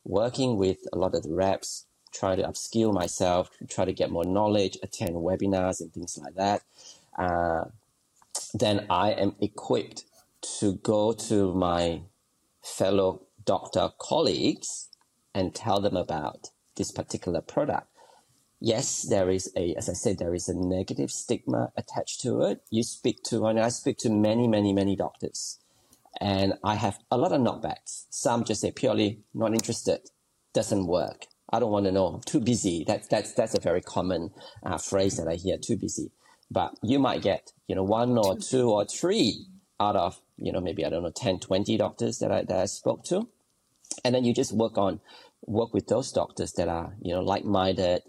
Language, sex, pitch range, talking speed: English, male, 95-110 Hz, 180 wpm